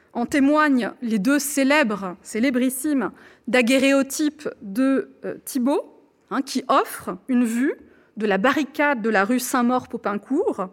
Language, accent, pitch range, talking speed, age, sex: French, French, 230-300 Hz, 140 wpm, 30-49, female